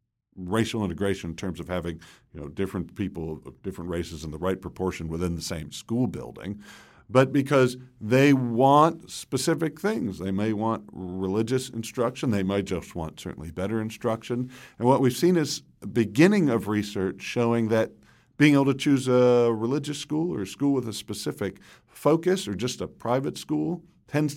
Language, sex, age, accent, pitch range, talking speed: English, male, 50-69, American, 95-125 Hz, 165 wpm